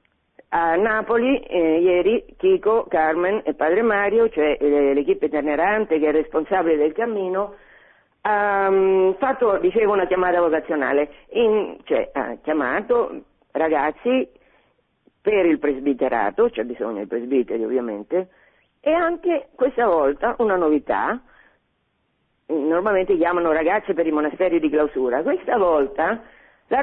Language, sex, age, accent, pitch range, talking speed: Italian, female, 40-59, native, 155-210 Hz, 125 wpm